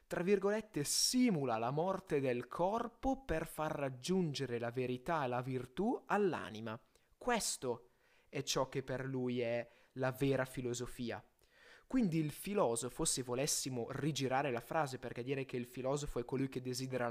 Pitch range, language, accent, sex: 125-180 Hz, Italian, native, male